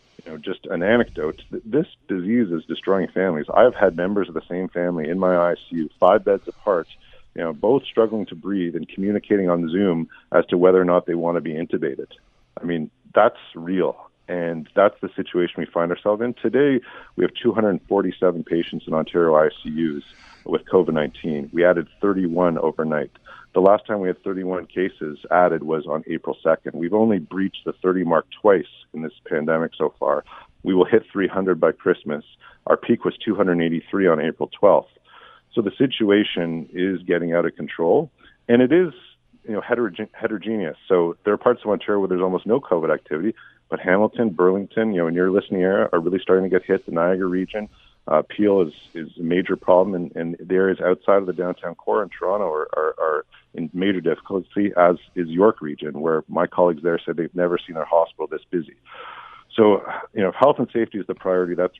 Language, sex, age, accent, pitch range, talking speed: English, male, 50-69, American, 85-105 Hz, 195 wpm